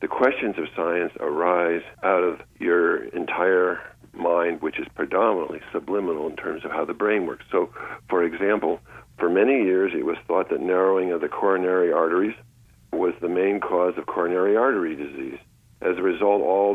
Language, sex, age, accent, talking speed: English, male, 60-79, American, 170 wpm